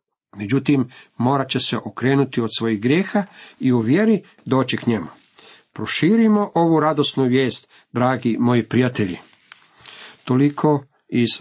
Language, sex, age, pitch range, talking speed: Croatian, male, 50-69, 115-160 Hz, 120 wpm